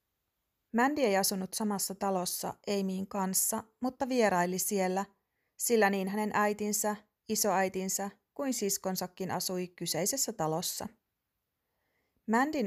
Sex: female